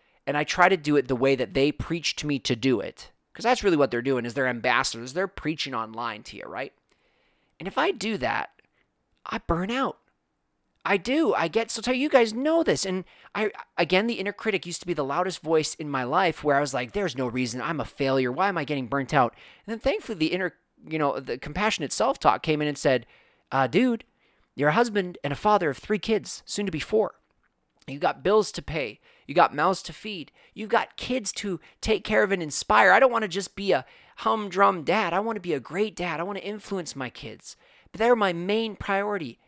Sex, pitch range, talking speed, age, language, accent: male, 140-205 Hz, 235 wpm, 30-49, English, American